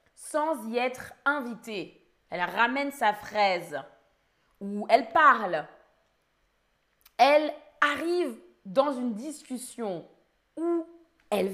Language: French